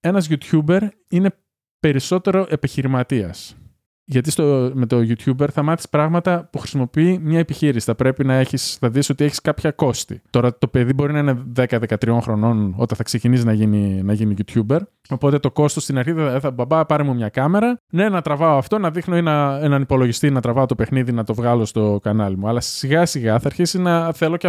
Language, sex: Greek, male